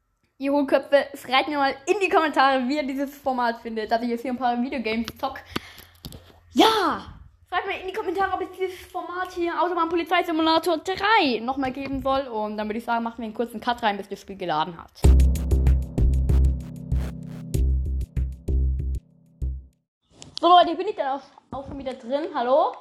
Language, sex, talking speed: German, female, 170 wpm